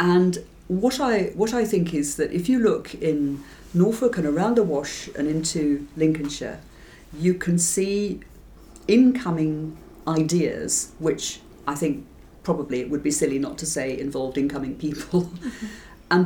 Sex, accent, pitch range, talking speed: female, British, 135-175 Hz, 150 wpm